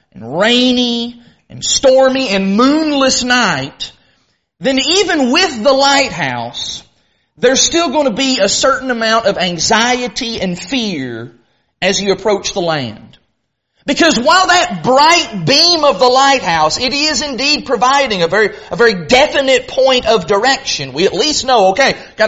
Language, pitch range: English, 215-290 Hz